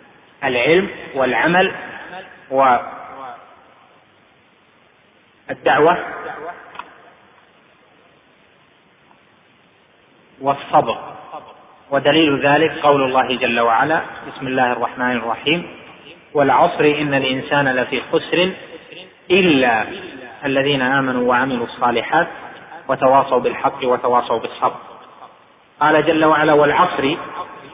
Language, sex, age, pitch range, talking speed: Arabic, male, 30-49, 130-155 Hz, 70 wpm